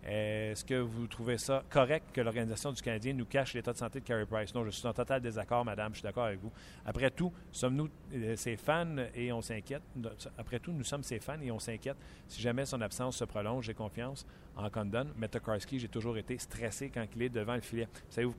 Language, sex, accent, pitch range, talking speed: French, male, Canadian, 115-150 Hz, 230 wpm